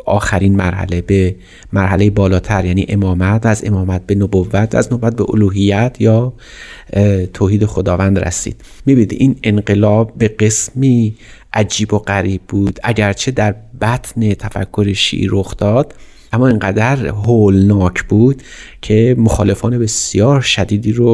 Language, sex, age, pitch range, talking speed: Persian, male, 30-49, 100-120 Hz, 120 wpm